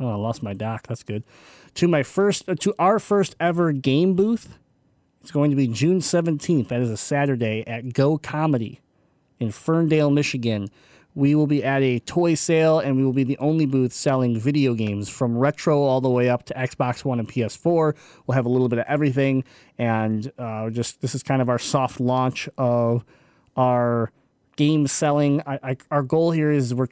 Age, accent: 30-49, American